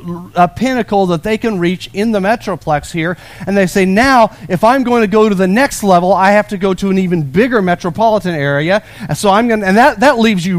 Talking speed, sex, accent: 245 wpm, male, American